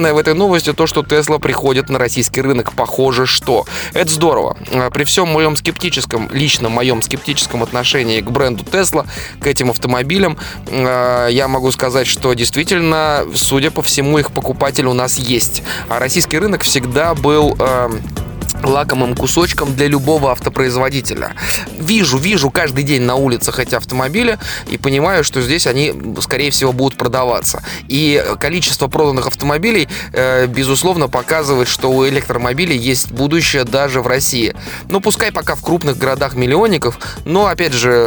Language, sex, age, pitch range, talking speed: Russian, male, 20-39, 125-150 Hz, 150 wpm